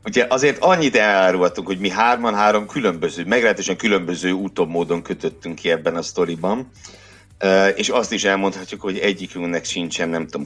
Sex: male